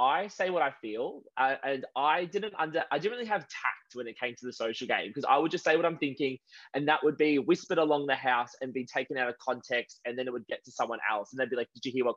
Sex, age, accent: male, 20-39, Australian